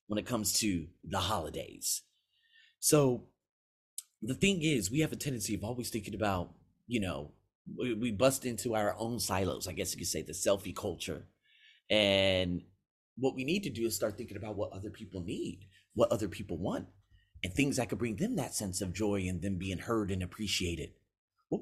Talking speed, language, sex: 190 wpm, English, male